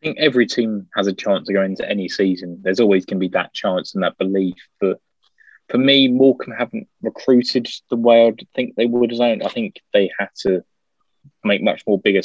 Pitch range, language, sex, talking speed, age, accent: 90-110 Hz, English, male, 220 wpm, 20-39, British